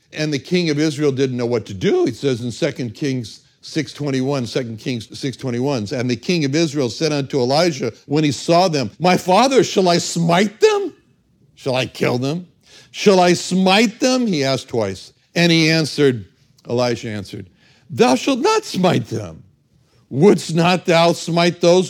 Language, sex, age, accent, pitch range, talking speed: English, male, 60-79, American, 125-180 Hz, 175 wpm